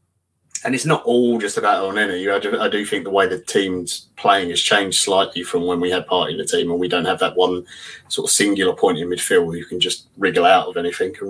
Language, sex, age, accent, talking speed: English, male, 20-39, British, 260 wpm